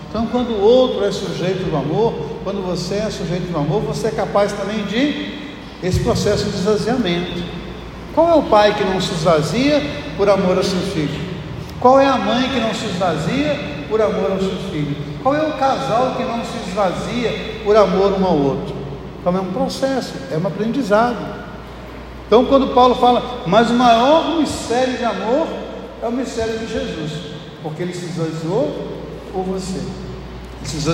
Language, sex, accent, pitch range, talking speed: Portuguese, male, Brazilian, 155-225 Hz, 175 wpm